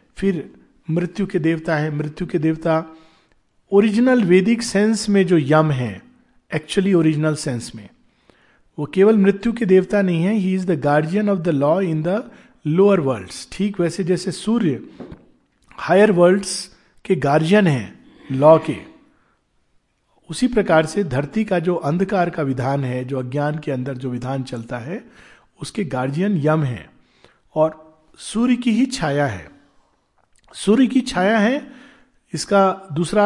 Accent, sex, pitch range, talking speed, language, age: native, male, 155-215 Hz, 150 wpm, Hindi, 50-69